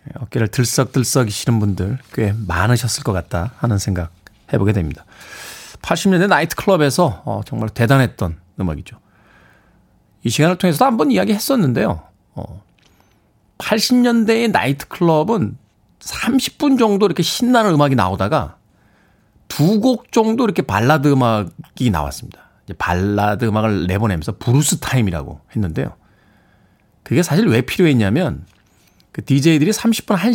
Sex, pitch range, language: male, 105-165 Hz, Korean